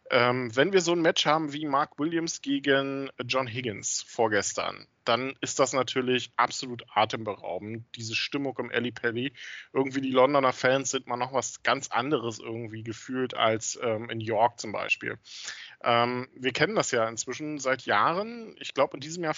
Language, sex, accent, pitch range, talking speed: German, male, German, 120-150 Hz, 175 wpm